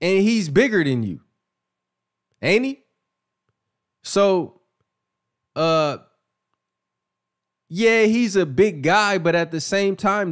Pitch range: 150-215 Hz